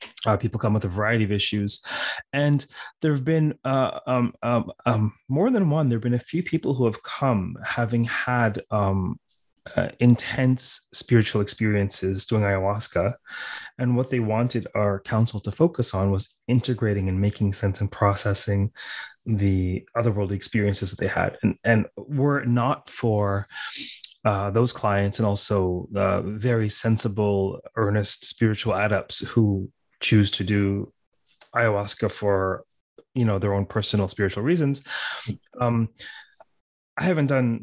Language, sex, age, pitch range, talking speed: English, male, 30-49, 100-125 Hz, 145 wpm